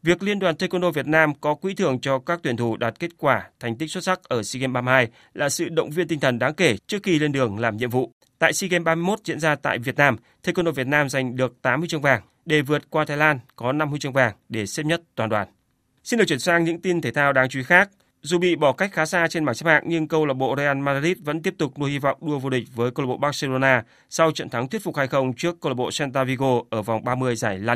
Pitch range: 130-165 Hz